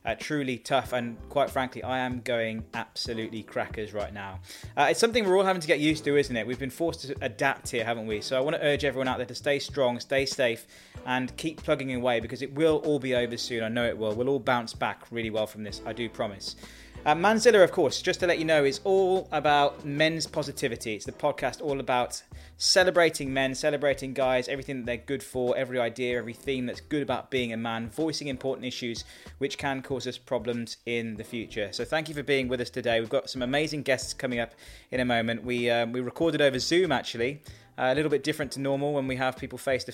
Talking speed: 235 wpm